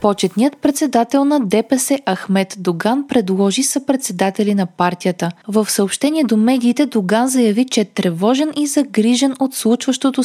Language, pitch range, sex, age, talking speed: Bulgarian, 195-265 Hz, female, 20-39, 135 wpm